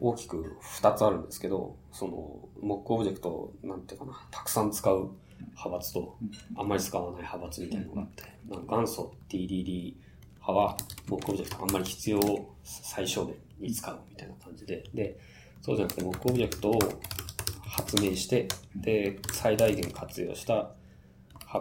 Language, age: Japanese, 20-39